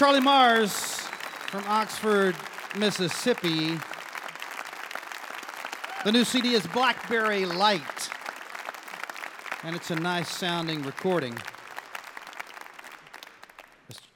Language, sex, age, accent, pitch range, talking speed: English, male, 40-59, American, 125-170 Hz, 75 wpm